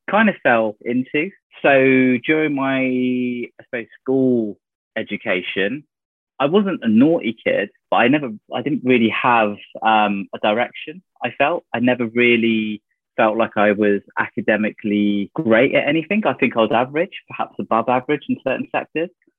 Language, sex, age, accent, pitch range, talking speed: English, male, 20-39, British, 105-135 Hz, 155 wpm